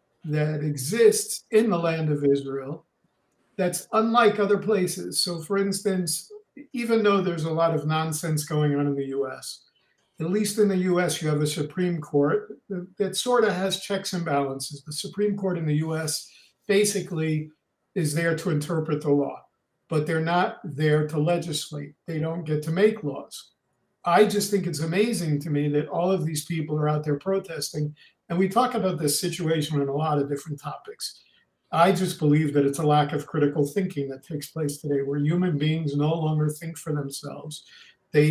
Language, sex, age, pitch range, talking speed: English, male, 50-69, 150-185 Hz, 190 wpm